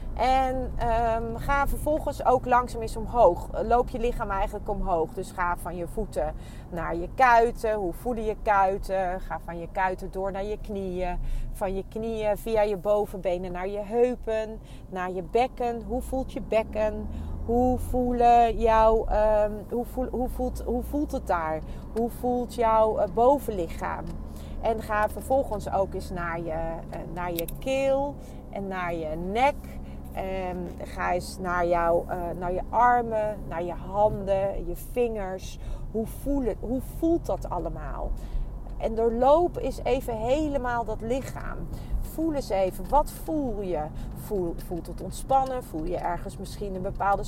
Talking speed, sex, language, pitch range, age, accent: 145 wpm, female, Dutch, 180-245 Hz, 40-59, Dutch